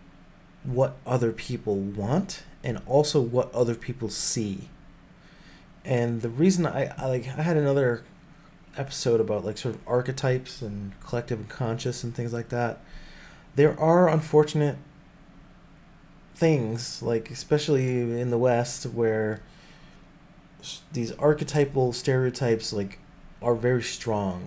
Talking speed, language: 120 wpm, English